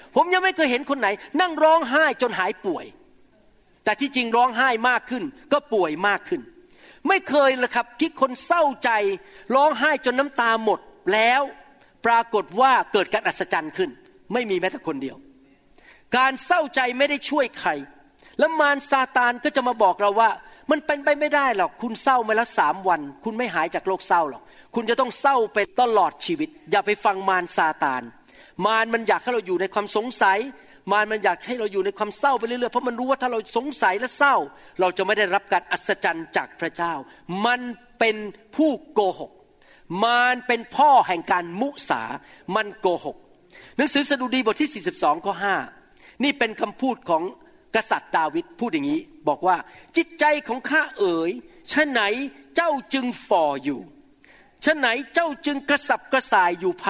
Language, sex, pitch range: Thai, male, 210-290 Hz